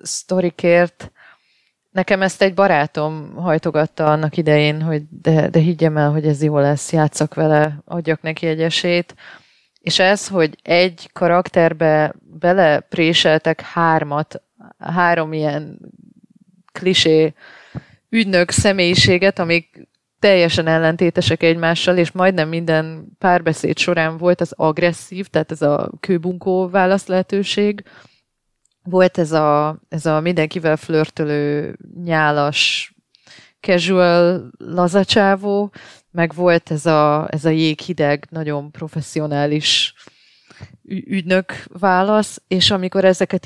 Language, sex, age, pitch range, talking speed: Hungarian, female, 30-49, 155-185 Hz, 105 wpm